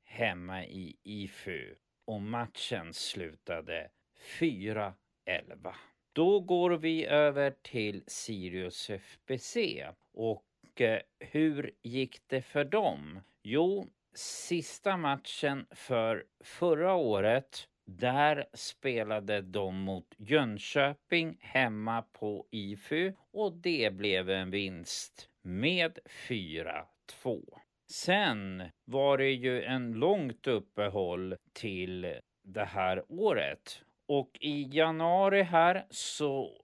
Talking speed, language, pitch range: 95 wpm, Swedish, 100-150 Hz